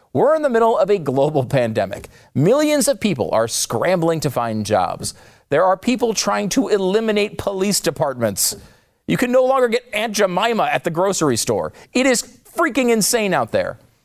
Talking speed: 175 wpm